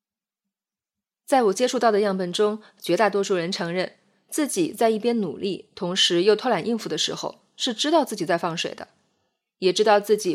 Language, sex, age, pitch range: Chinese, female, 20-39, 185-240 Hz